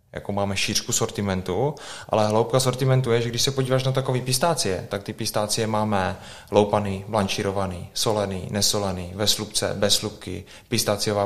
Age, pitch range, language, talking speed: 20-39, 100-110 Hz, Czech, 150 wpm